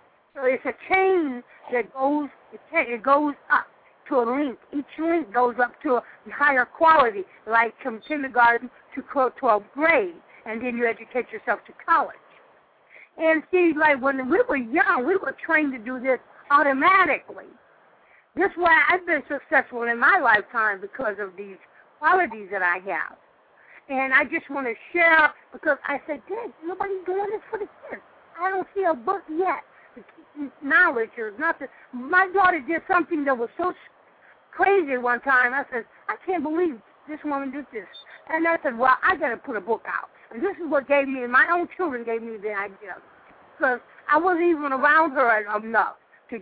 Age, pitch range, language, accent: 50-69, 245-330 Hz, English, American